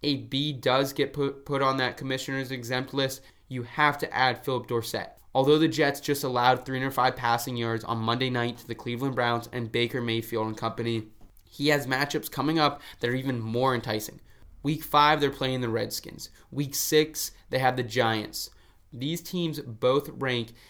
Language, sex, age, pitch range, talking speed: English, male, 20-39, 120-140 Hz, 175 wpm